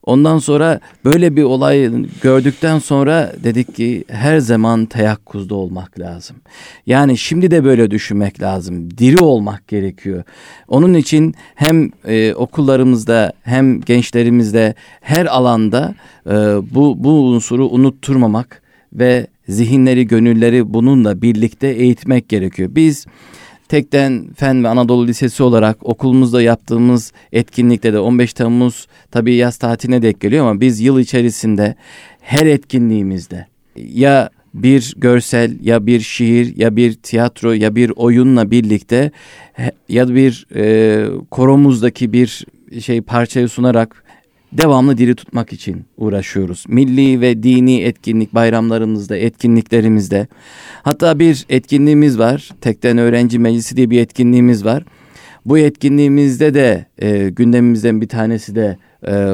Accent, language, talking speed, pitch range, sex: native, Turkish, 120 wpm, 110-130 Hz, male